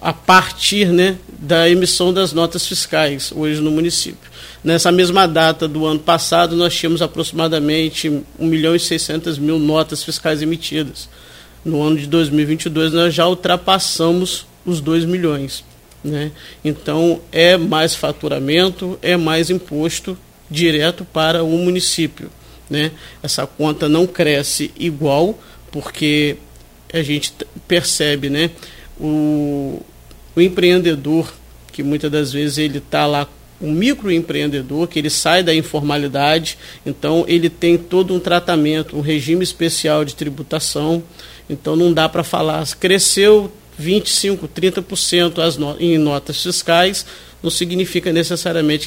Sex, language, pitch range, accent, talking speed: male, Portuguese, 150-175 Hz, Brazilian, 125 wpm